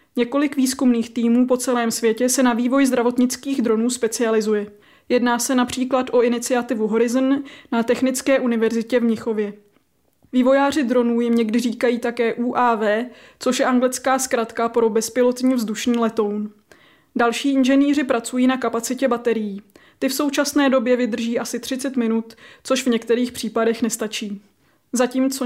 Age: 20-39